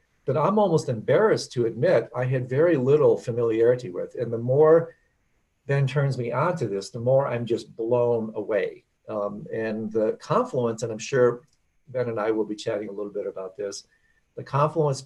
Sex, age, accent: male, 50-69, American